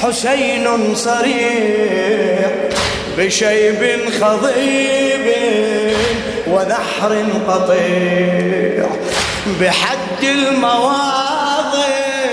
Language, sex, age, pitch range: Arabic, male, 20-39, 185-265 Hz